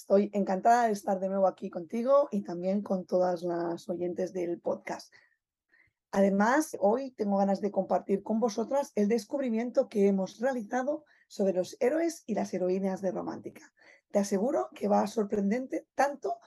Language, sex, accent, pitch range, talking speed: Spanish, female, Spanish, 195-270 Hz, 155 wpm